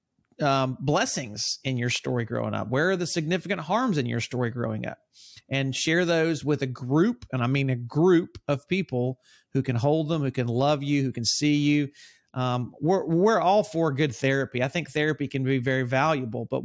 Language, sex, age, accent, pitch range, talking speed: English, male, 40-59, American, 130-165 Hz, 205 wpm